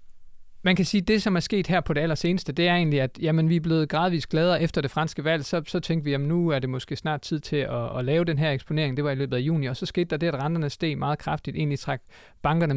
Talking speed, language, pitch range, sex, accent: 295 wpm, Danish, 135-165 Hz, male, native